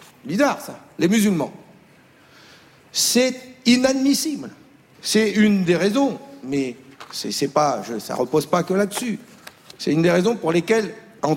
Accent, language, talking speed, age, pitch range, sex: French, French, 150 wpm, 50-69, 185-255 Hz, male